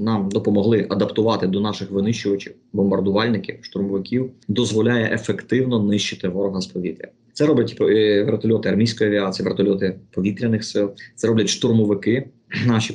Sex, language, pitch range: male, Ukrainian, 100-110 Hz